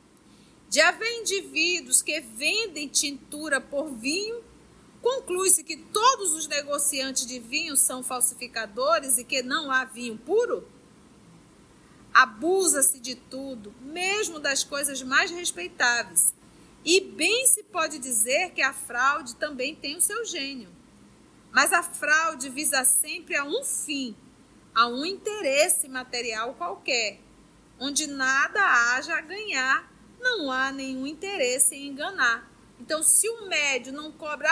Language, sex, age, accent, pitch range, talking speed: Portuguese, female, 40-59, Brazilian, 260-370 Hz, 130 wpm